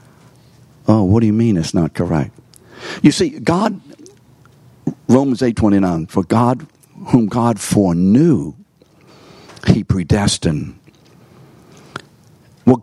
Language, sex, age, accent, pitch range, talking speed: English, male, 60-79, American, 115-140 Hz, 100 wpm